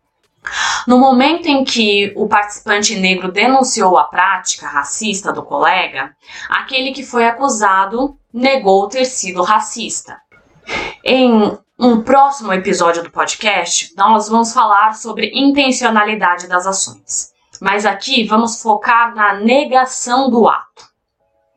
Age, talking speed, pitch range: 20-39, 115 wpm, 185-255 Hz